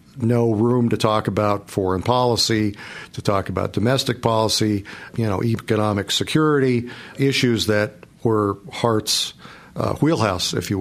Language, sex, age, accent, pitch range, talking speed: English, male, 50-69, American, 105-120 Hz, 135 wpm